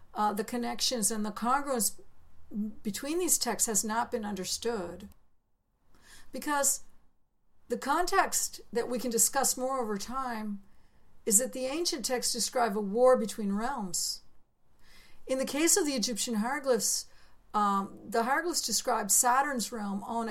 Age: 60-79